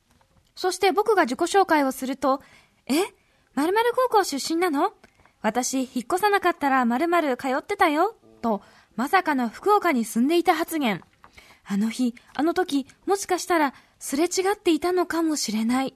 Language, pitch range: Japanese, 240-345 Hz